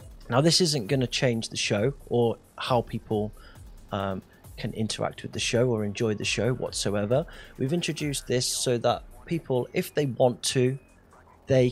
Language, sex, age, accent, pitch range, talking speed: English, male, 30-49, British, 115-145 Hz, 170 wpm